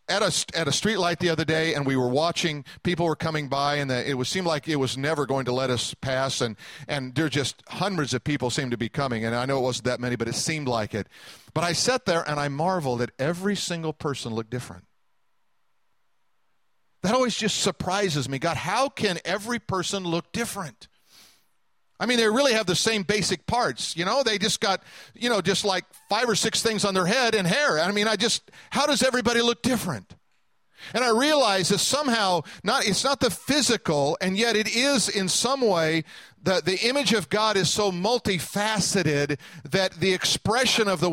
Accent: American